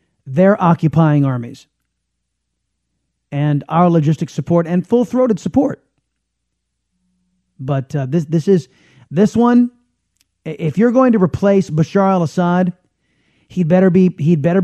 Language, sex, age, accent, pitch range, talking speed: English, male, 30-49, American, 140-185 Hz, 125 wpm